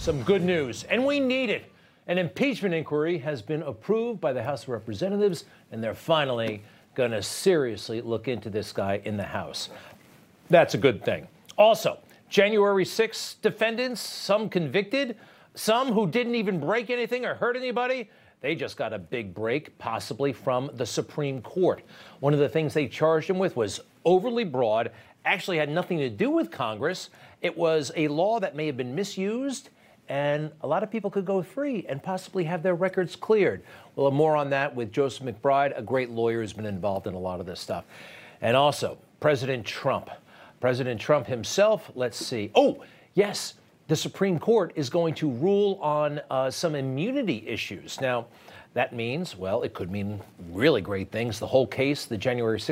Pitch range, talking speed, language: 125-195 Hz, 180 wpm, English